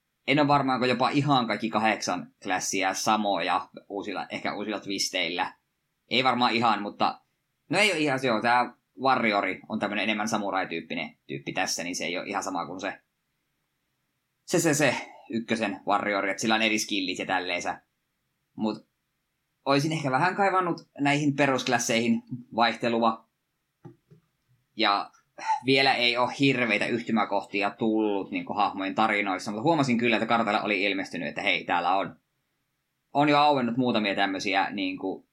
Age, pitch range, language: 20-39, 105-135 Hz, Finnish